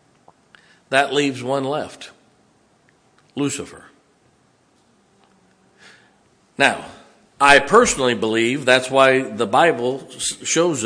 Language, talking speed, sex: English, 75 wpm, male